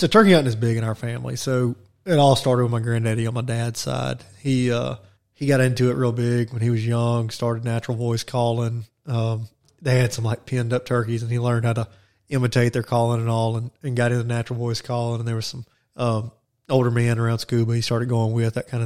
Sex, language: male, English